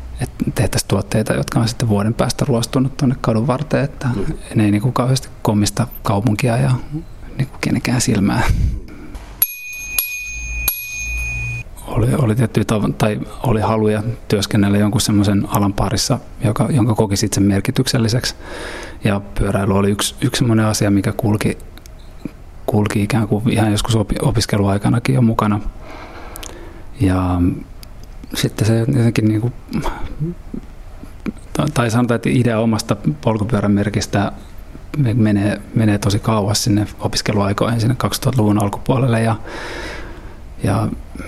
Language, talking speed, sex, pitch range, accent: Finnish, 115 wpm, male, 100-120 Hz, native